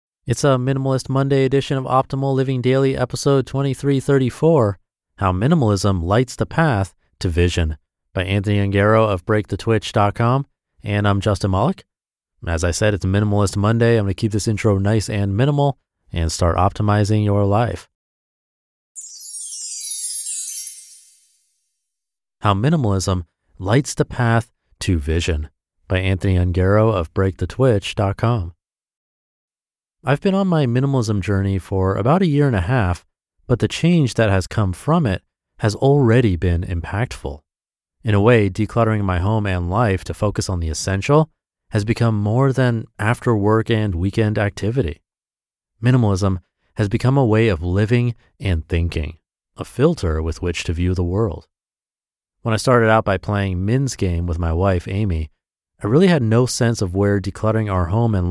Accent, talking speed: American, 150 wpm